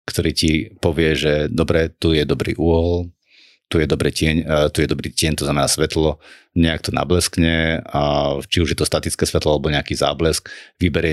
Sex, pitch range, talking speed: male, 75-90 Hz, 165 wpm